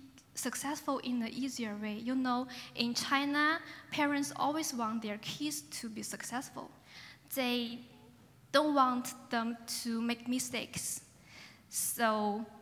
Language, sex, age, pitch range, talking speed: English, female, 10-29, 230-285 Hz, 120 wpm